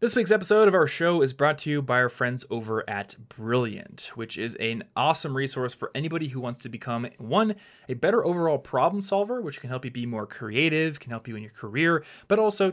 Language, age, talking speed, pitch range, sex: English, 20-39, 225 wpm, 120-150 Hz, male